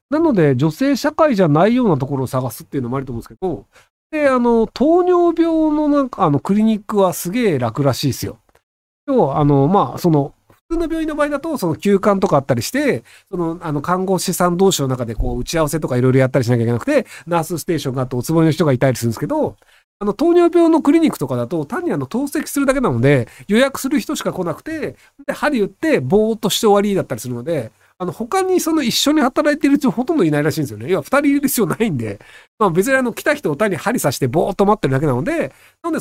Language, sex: Japanese, male